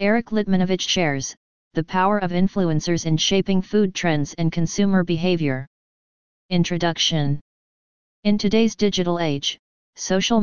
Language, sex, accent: English, female, American